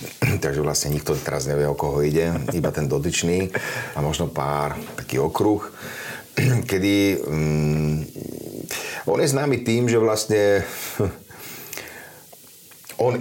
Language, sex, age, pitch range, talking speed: Slovak, male, 30-49, 80-110 Hz, 115 wpm